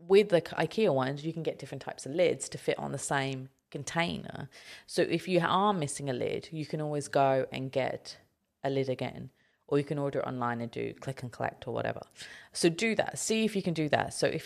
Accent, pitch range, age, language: British, 140-200 Hz, 30-49, English